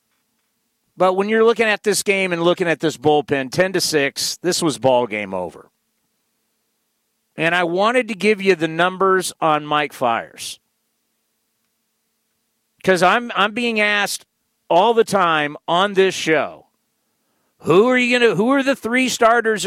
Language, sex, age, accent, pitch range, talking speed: English, male, 50-69, American, 160-220 Hz, 155 wpm